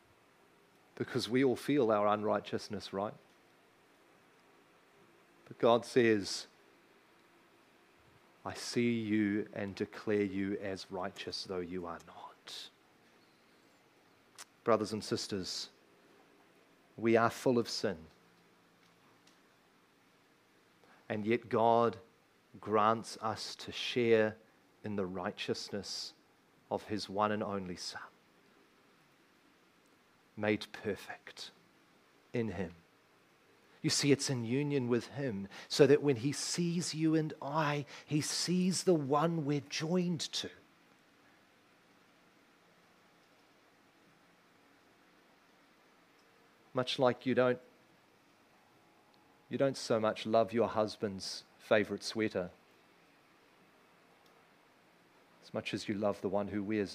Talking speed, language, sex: 100 wpm, English, male